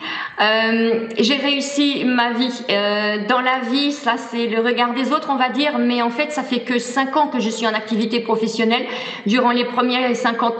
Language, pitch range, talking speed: French, 215-245 Hz, 205 wpm